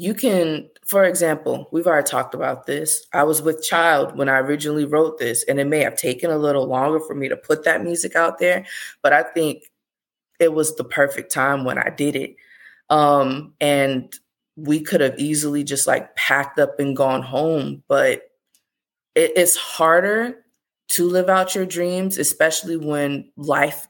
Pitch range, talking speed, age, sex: 145-175 Hz, 175 wpm, 20-39, female